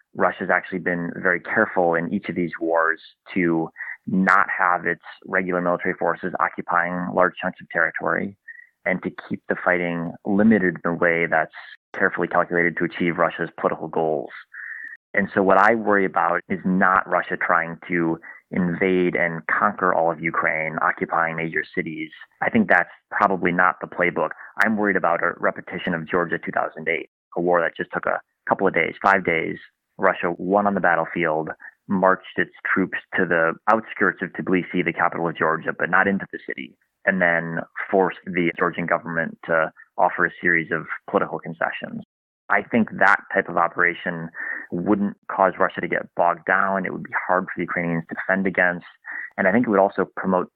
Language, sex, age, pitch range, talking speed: English, male, 30-49, 85-95 Hz, 180 wpm